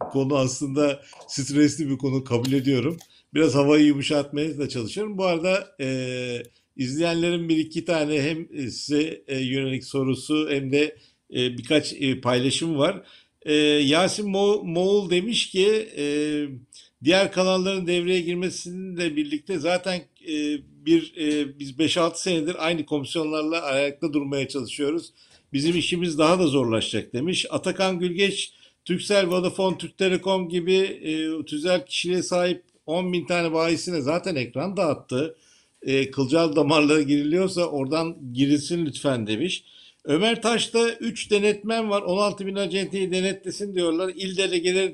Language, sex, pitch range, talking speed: Turkish, male, 145-185 Hz, 130 wpm